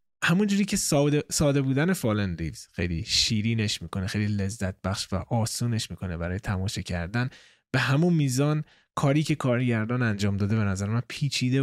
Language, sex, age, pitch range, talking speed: Persian, male, 20-39, 105-145 Hz, 150 wpm